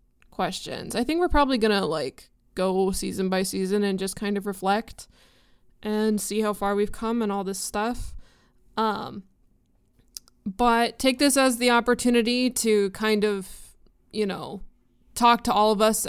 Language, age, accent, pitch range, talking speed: English, 20-39, American, 205-245 Hz, 160 wpm